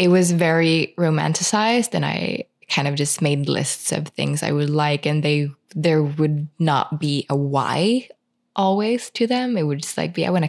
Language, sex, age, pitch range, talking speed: English, female, 20-39, 145-180 Hz, 200 wpm